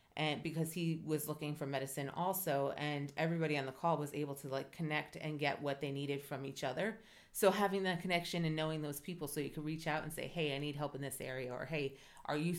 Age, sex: 30-49, female